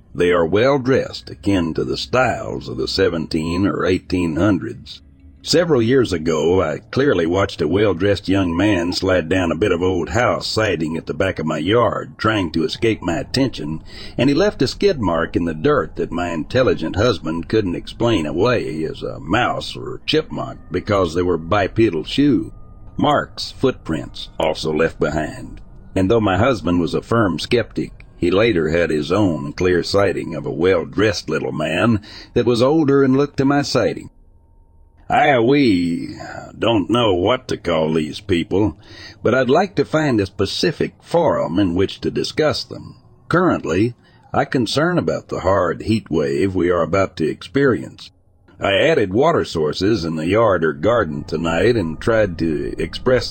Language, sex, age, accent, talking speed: English, male, 60-79, American, 170 wpm